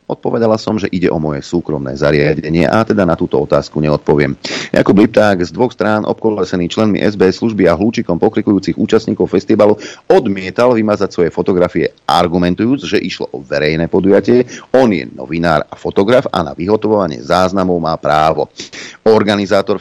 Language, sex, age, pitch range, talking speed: Slovak, male, 40-59, 85-100 Hz, 150 wpm